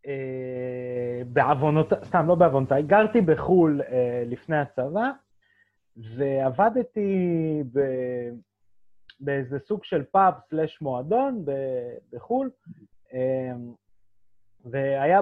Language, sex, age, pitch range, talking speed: Hebrew, male, 30-49, 130-205 Hz, 80 wpm